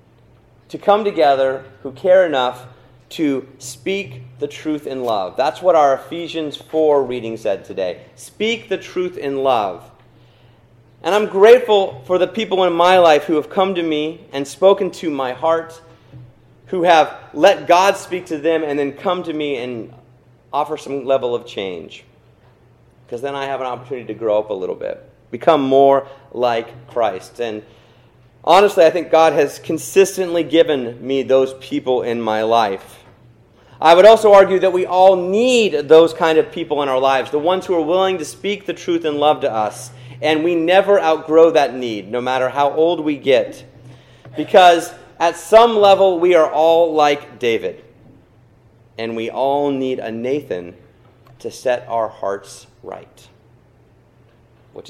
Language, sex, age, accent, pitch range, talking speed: English, male, 40-59, American, 120-170 Hz, 165 wpm